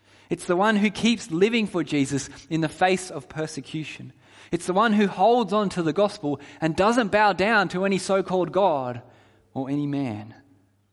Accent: Australian